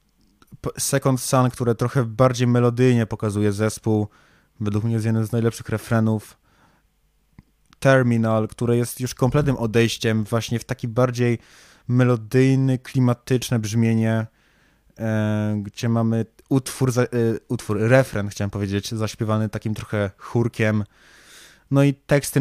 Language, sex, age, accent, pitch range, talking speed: Polish, male, 20-39, native, 105-120 Hz, 110 wpm